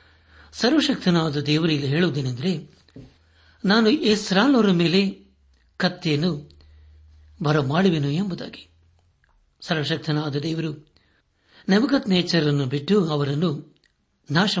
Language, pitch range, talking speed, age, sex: Kannada, 145-195 Hz, 80 wpm, 60-79, male